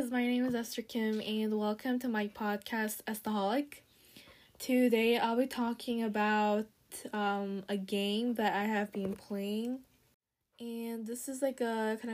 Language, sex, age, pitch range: Korean, female, 10-29, 200-240 Hz